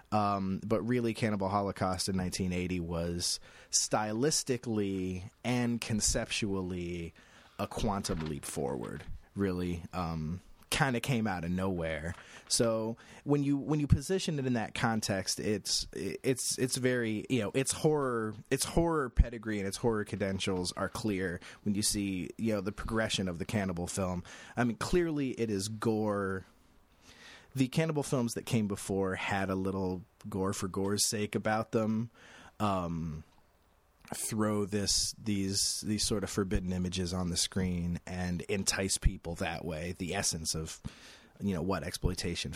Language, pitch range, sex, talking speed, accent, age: English, 90-115 Hz, male, 150 wpm, American, 30-49